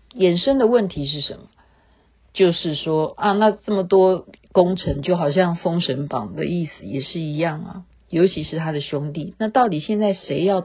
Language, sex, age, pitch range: Chinese, female, 50-69, 150-225 Hz